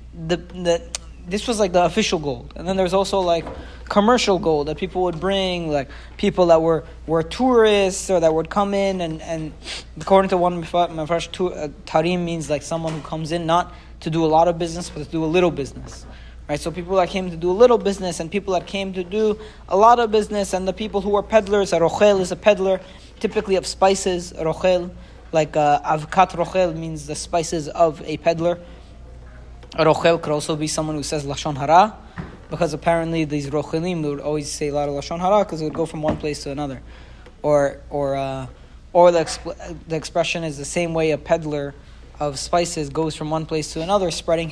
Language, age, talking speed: English, 20-39, 205 wpm